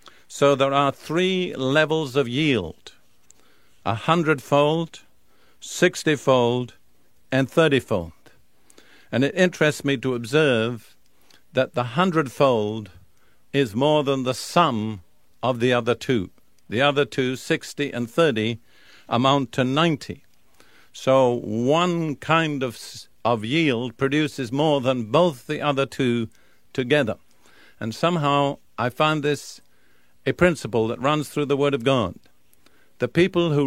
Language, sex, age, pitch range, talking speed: English, male, 50-69, 115-150 Hz, 125 wpm